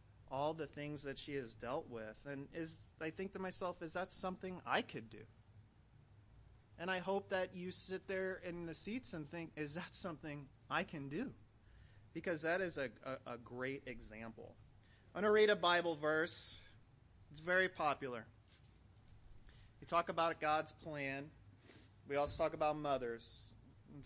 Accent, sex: American, male